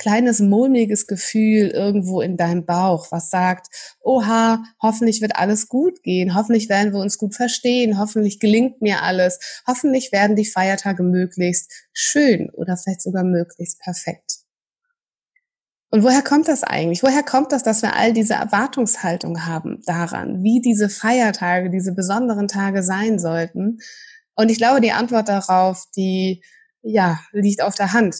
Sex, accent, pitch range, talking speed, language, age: female, German, 185-235 Hz, 150 wpm, German, 20-39